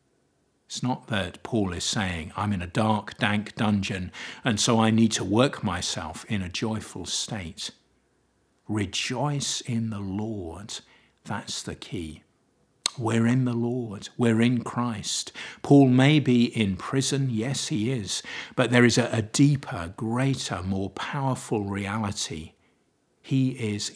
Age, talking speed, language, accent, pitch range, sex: 50-69, 140 wpm, English, British, 100-120 Hz, male